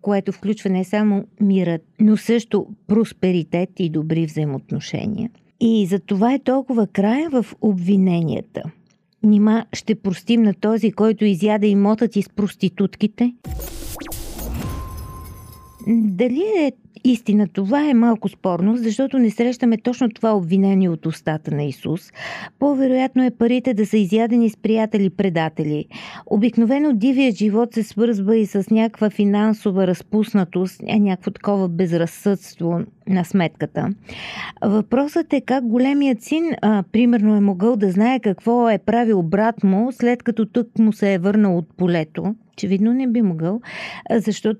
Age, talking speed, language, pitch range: 50-69, 135 wpm, Bulgarian, 190-230 Hz